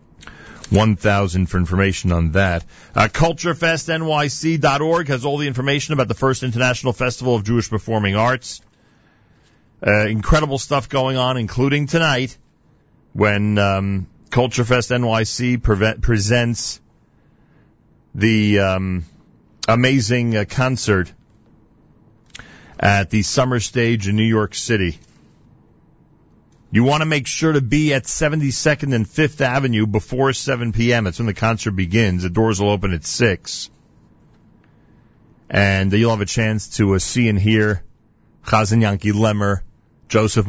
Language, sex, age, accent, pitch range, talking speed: English, male, 40-59, American, 100-130 Hz, 125 wpm